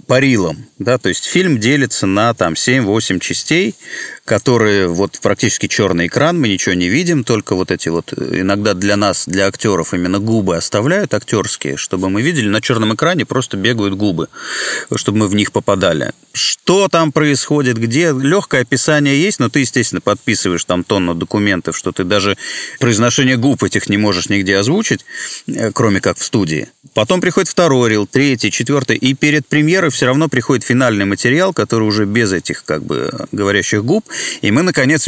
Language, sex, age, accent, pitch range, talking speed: Russian, male, 30-49, native, 100-140 Hz, 170 wpm